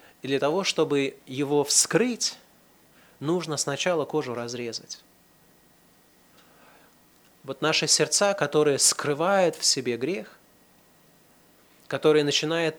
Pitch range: 125-155 Hz